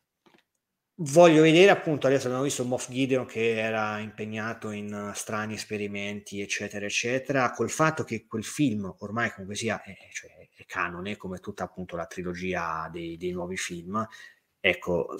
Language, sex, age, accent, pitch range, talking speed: Italian, male, 30-49, native, 105-130 Hz, 145 wpm